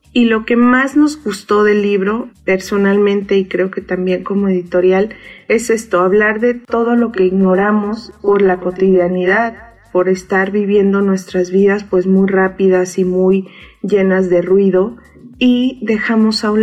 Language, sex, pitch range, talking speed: Spanish, female, 190-215 Hz, 155 wpm